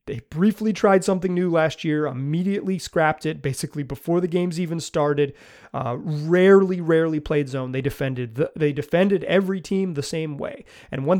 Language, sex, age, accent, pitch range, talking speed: English, male, 30-49, American, 140-175 Hz, 175 wpm